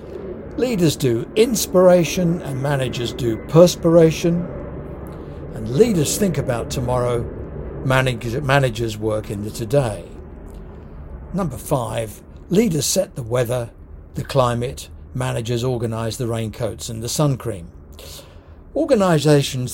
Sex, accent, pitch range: male, British, 115-150 Hz